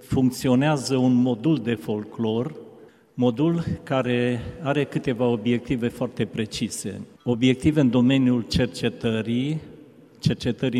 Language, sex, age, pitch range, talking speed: Romanian, male, 50-69, 120-135 Hz, 95 wpm